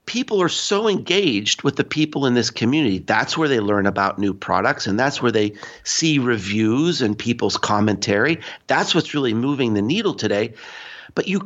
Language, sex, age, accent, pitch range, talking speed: English, male, 50-69, American, 130-190 Hz, 185 wpm